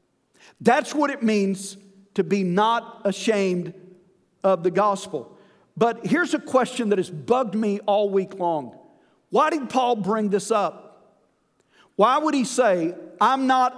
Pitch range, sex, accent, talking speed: 190-240 Hz, male, American, 150 wpm